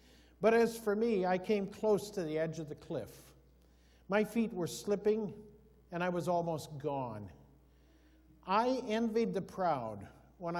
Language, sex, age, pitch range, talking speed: English, male, 50-69, 145-205 Hz, 155 wpm